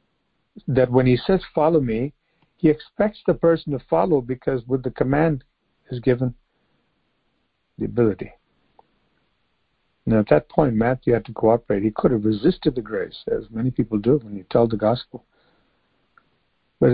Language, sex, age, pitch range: English, male, 60-79, 120-150 Hz